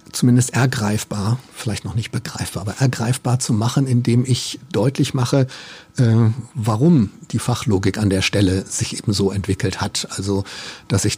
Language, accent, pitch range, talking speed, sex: German, German, 110-130 Hz, 155 wpm, male